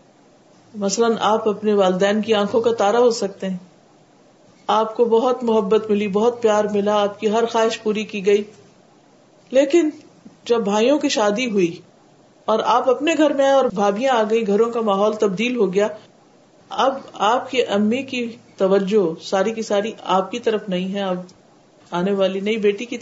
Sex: female